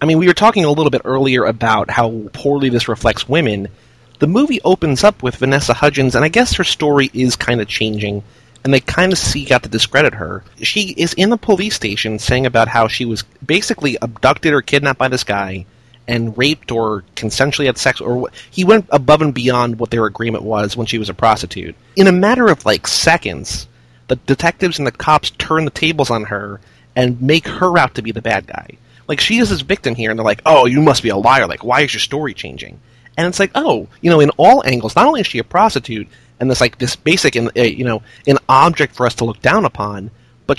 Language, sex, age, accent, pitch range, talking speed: English, male, 30-49, American, 115-150 Hz, 235 wpm